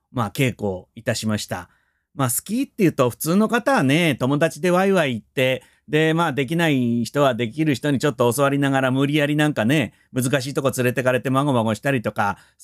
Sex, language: male, Japanese